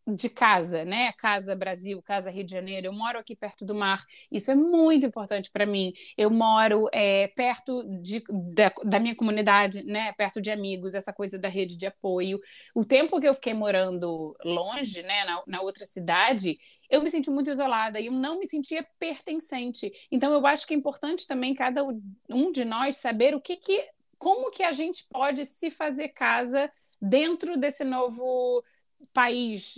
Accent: Brazilian